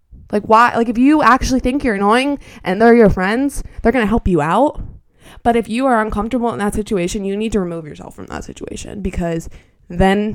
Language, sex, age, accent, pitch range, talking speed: English, female, 20-39, American, 175-215 Hz, 215 wpm